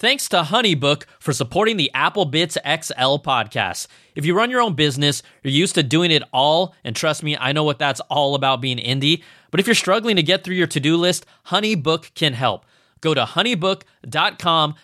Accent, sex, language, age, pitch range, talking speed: American, male, English, 20-39, 135-175 Hz, 195 wpm